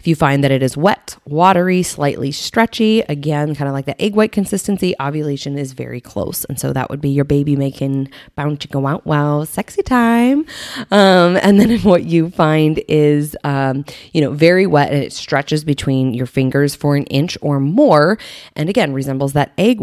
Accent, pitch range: American, 135-175 Hz